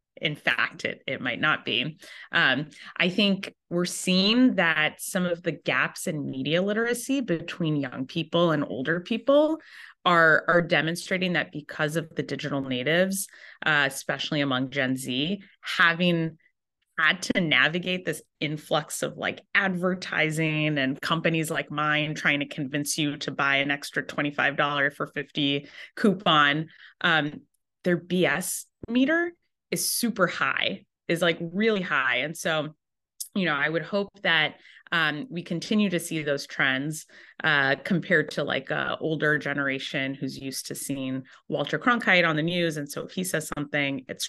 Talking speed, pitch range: 155 wpm, 145-180 Hz